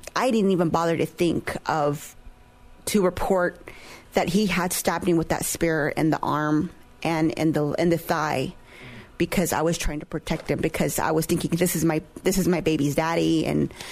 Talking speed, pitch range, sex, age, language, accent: 200 wpm, 160-185 Hz, female, 30-49, English, American